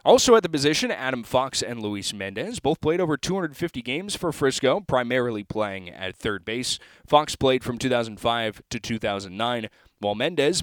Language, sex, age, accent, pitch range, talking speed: English, male, 20-39, American, 110-140 Hz, 165 wpm